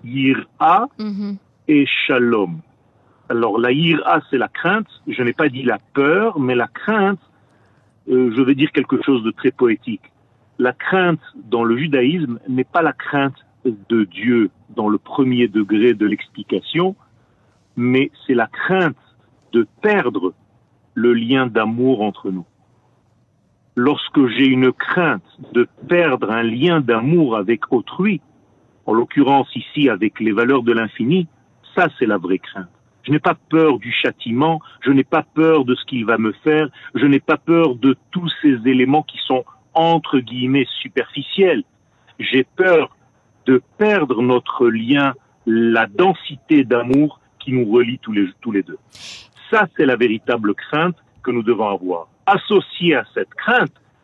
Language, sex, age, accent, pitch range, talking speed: French, male, 40-59, French, 120-155 Hz, 160 wpm